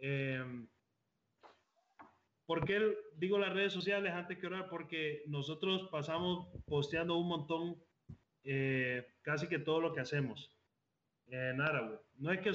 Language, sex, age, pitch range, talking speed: Spanish, male, 30-49, 135-170 Hz, 140 wpm